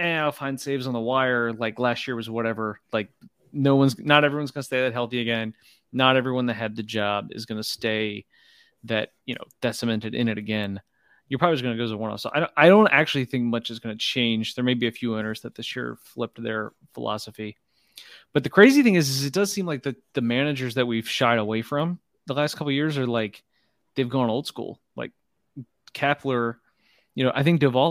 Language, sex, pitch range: English, male, 115-140 Hz